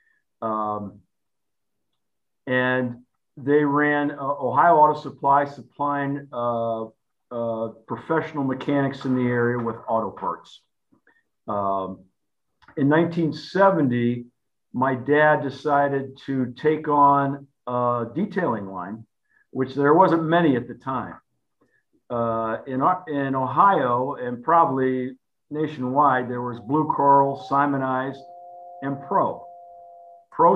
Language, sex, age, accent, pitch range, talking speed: English, male, 50-69, American, 120-150 Hz, 105 wpm